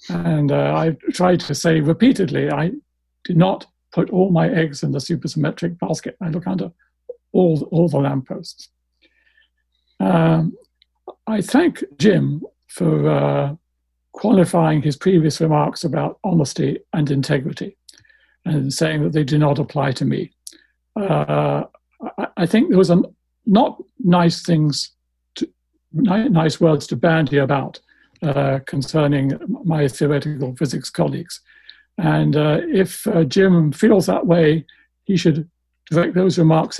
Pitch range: 140-175 Hz